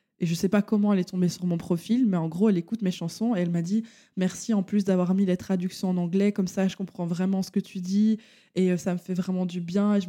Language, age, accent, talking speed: French, 20-39, French, 305 wpm